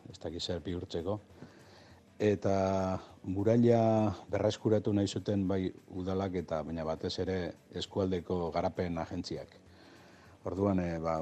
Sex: male